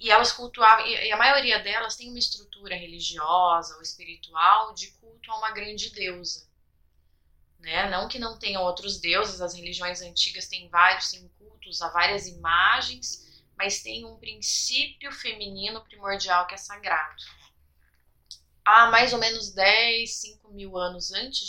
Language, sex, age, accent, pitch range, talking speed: Portuguese, female, 20-39, Brazilian, 170-210 Hz, 150 wpm